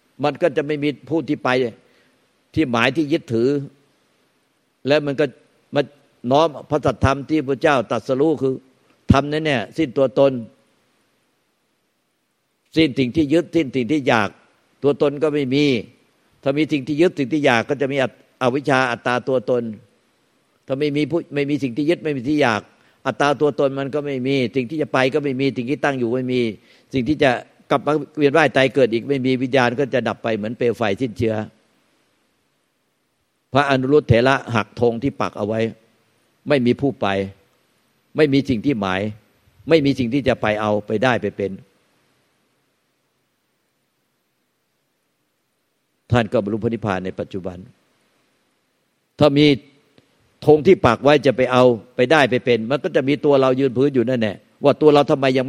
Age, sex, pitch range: 60-79, male, 120-145 Hz